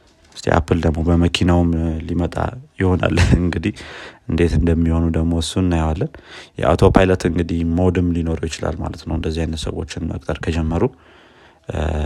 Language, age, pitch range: Amharic, 30-49, 80-90 Hz